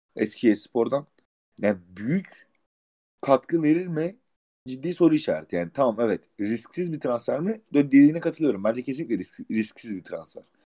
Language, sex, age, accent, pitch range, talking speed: Turkish, male, 30-49, native, 105-140 Hz, 145 wpm